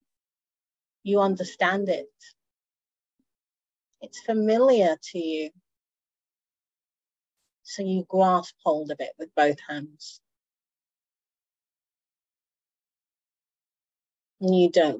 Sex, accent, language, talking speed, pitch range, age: female, British, English, 75 wpm, 155-220 Hz, 40-59